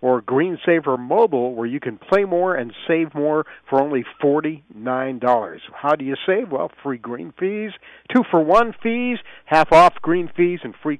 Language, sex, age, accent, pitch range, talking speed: English, male, 50-69, American, 130-175 Hz, 165 wpm